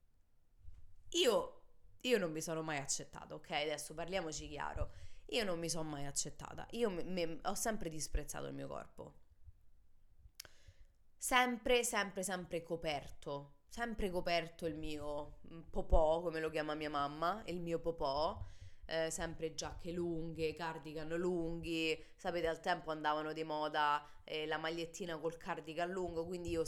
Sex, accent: female, native